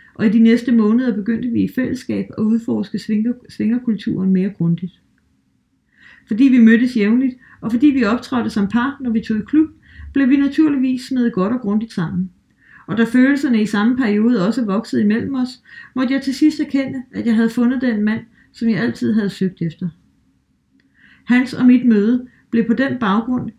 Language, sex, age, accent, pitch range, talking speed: Danish, female, 40-59, native, 205-250 Hz, 185 wpm